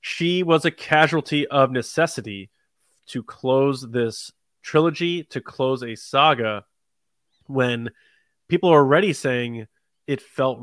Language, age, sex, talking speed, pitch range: English, 20-39, male, 120 wpm, 120-150 Hz